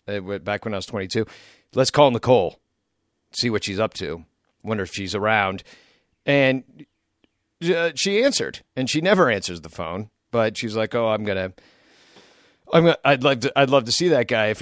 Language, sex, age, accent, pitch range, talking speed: English, male, 40-59, American, 110-150 Hz, 200 wpm